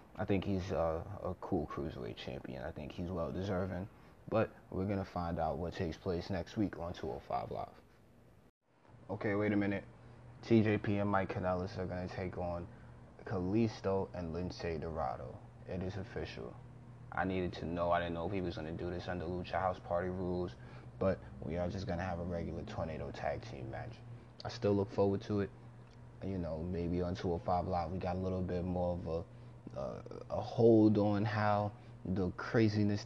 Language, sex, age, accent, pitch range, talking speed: English, male, 20-39, American, 85-105 Hz, 190 wpm